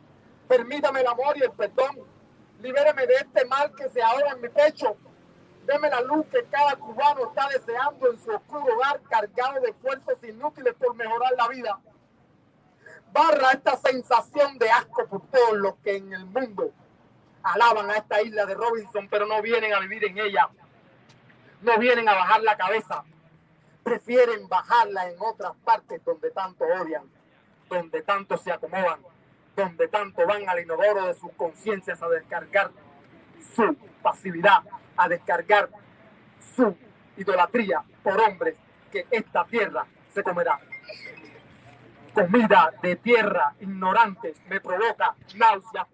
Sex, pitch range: male, 210-290 Hz